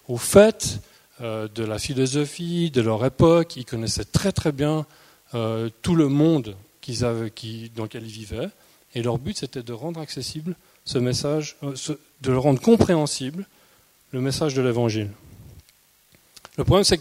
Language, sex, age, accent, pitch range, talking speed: French, male, 40-59, French, 120-155 Hz, 165 wpm